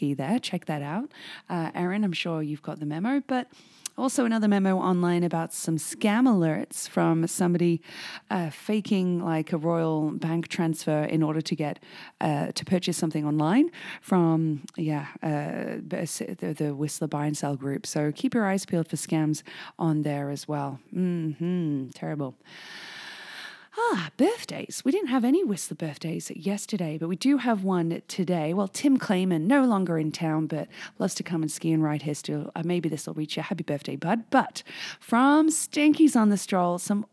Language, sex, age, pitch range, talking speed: English, female, 20-39, 155-200 Hz, 180 wpm